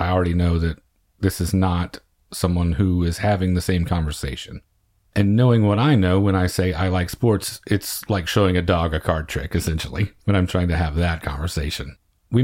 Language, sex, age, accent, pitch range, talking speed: English, male, 40-59, American, 90-105 Hz, 205 wpm